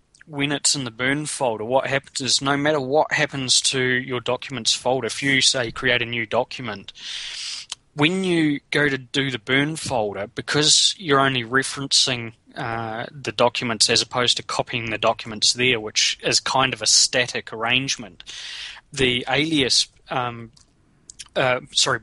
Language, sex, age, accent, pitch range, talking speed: English, male, 20-39, Australian, 120-145 Hz, 160 wpm